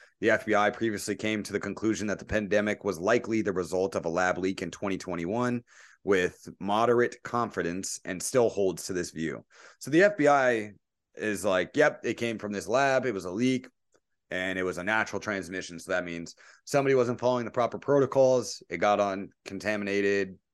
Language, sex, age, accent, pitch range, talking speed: English, male, 30-49, American, 95-120 Hz, 185 wpm